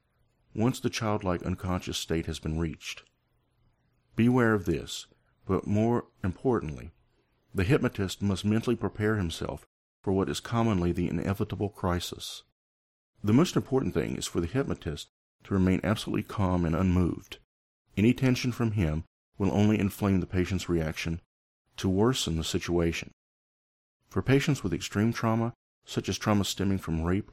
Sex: male